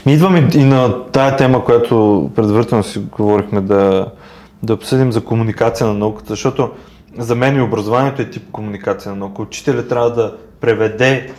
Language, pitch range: Bulgarian, 115-140 Hz